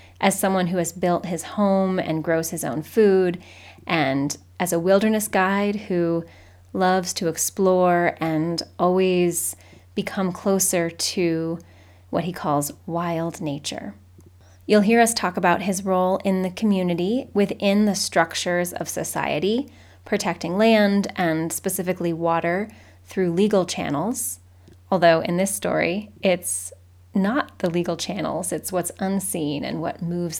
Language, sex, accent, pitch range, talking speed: English, female, American, 160-190 Hz, 135 wpm